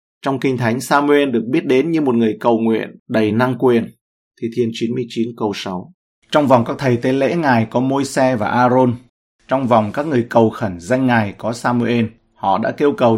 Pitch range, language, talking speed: 105-125 Hz, Vietnamese, 210 wpm